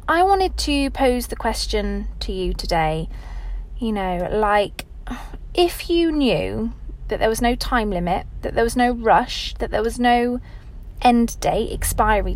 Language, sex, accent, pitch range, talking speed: English, female, British, 210-285 Hz, 160 wpm